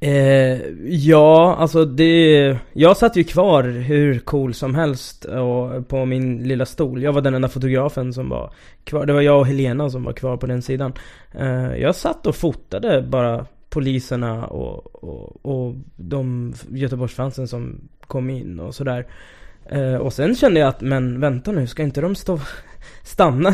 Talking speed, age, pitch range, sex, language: 170 wpm, 20-39, 125-150 Hz, male, English